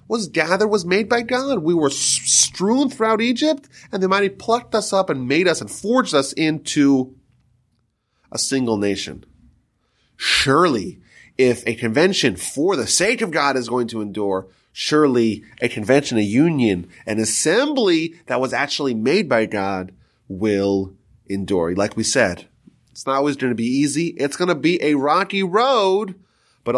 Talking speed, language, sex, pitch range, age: 165 wpm, English, male, 110-155 Hz, 30-49